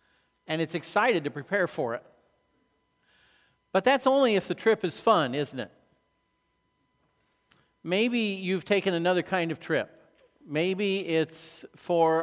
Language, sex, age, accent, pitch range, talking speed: English, male, 50-69, American, 145-185 Hz, 130 wpm